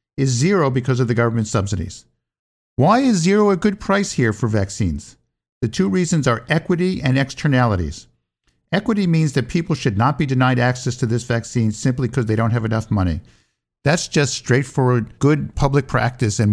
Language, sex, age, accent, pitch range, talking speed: English, male, 50-69, American, 120-150 Hz, 180 wpm